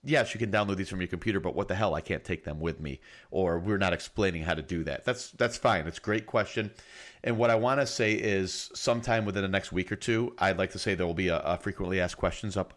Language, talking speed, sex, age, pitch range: English, 280 wpm, male, 30-49, 85-110 Hz